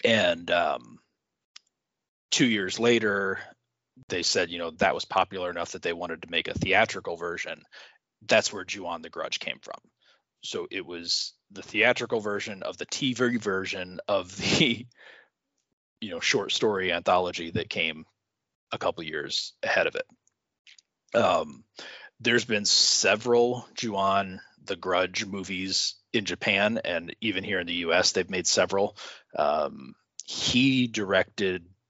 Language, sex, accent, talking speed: English, male, American, 140 wpm